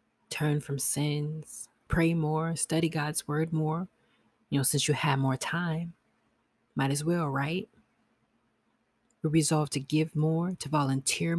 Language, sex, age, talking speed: English, female, 30-49, 140 wpm